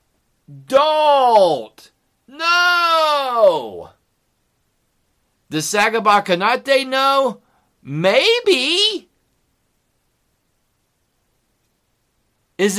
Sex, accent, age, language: male, American, 50-69, English